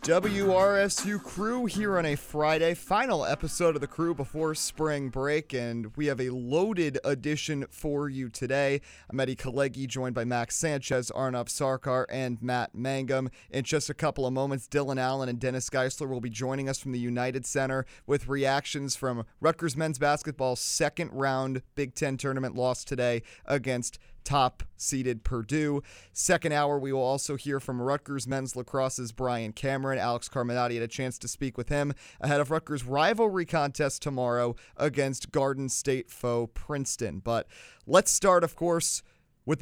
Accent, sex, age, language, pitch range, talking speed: American, male, 30-49, English, 125-150 Hz, 170 wpm